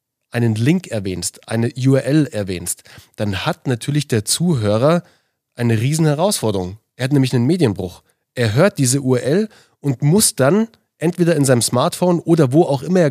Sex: male